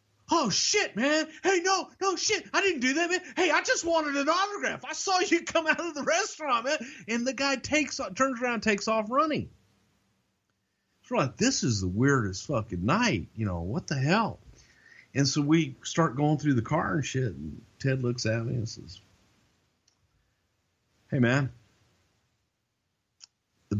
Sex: male